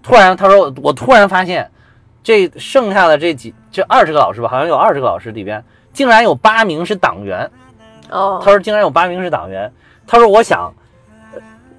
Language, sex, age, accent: Chinese, male, 30-49, native